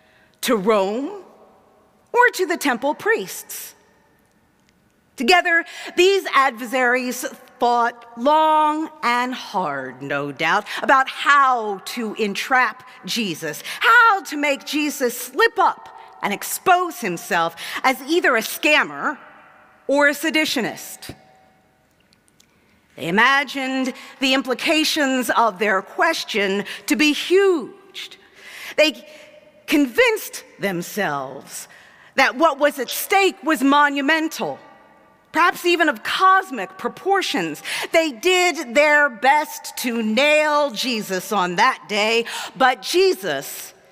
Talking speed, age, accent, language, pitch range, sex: 100 wpm, 40-59, American, English, 240-330 Hz, female